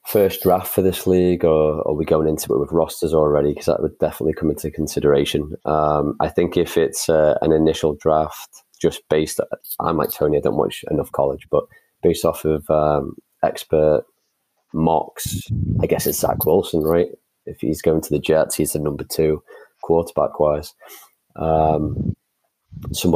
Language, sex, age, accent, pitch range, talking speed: English, male, 20-39, British, 80-85 Hz, 175 wpm